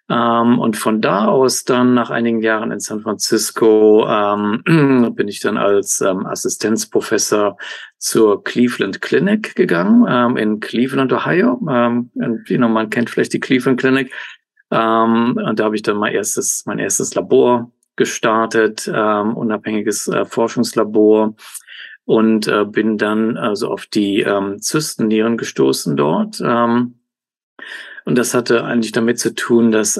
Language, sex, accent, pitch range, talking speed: German, male, German, 105-120 Hz, 145 wpm